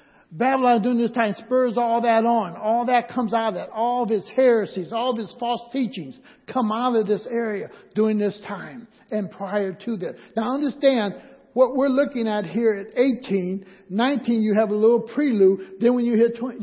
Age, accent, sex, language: 60-79, American, male, English